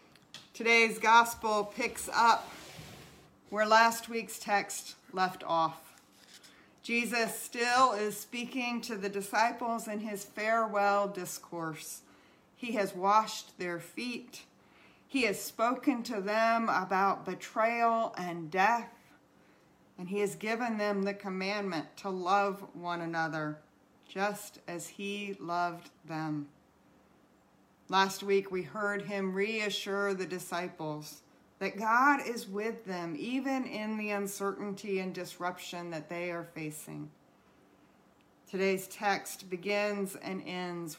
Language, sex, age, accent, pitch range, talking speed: English, female, 40-59, American, 180-225 Hz, 115 wpm